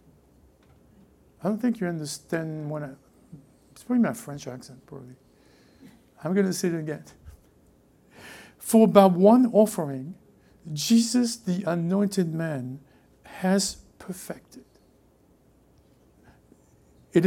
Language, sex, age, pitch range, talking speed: English, male, 60-79, 160-210 Hz, 105 wpm